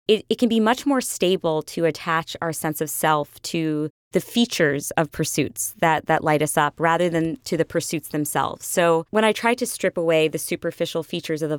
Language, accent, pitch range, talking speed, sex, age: English, American, 165-195 Hz, 210 wpm, female, 20-39